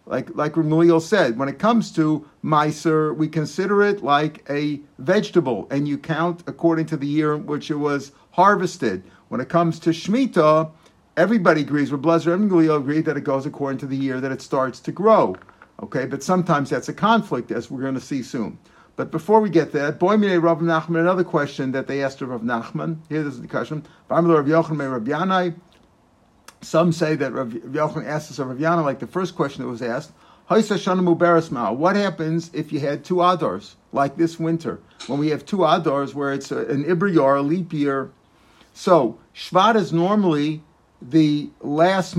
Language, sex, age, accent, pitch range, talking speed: English, male, 50-69, American, 140-170 Hz, 180 wpm